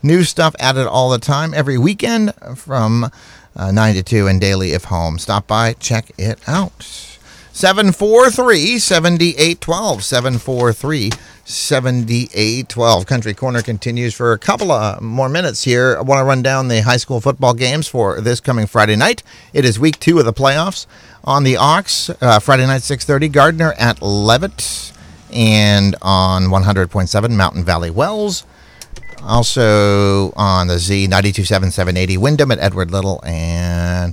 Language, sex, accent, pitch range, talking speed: English, male, American, 100-150 Hz, 150 wpm